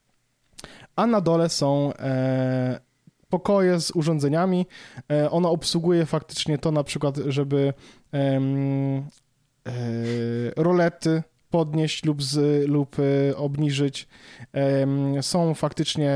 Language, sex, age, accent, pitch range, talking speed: Polish, male, 20-39, native, 135-160 Hz, 80 wpm